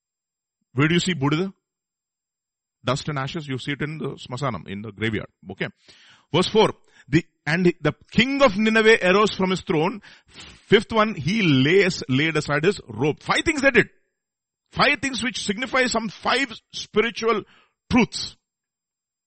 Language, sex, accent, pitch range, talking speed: English, male, Indian, 130-205 Hz, 155 wpm